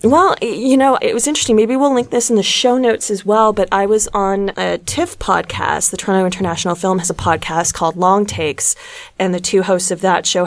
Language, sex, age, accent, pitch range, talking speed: English, female, 20-39, American, 175-230 Hz, 230 wpm